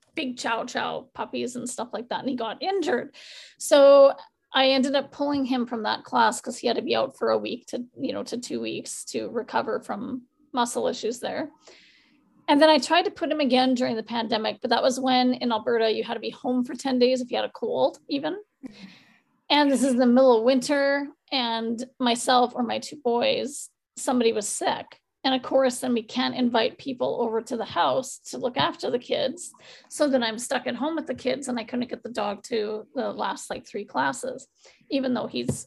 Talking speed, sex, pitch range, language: 220 wpm, female, 240-280 Hz, English